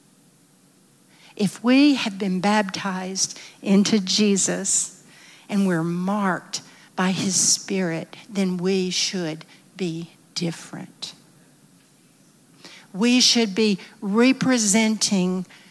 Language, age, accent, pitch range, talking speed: English, 60-79, American, 185-225 Hz, 85 wpm